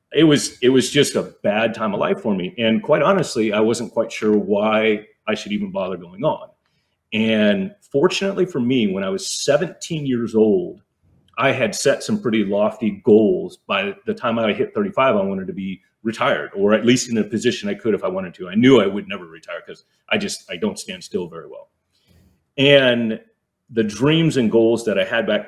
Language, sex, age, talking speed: English, male, 30-49, 210 wpm